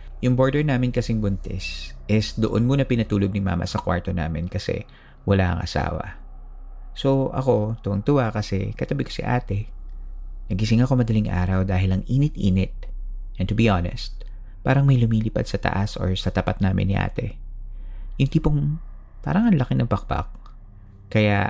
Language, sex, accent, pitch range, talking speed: Filipino, male, native, 95-120 Hz, 160 wpm